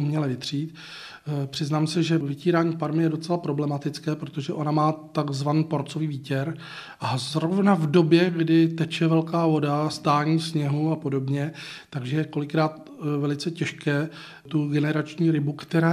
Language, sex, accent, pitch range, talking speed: Czech, male, native, 140-160 Hz, 140 wpm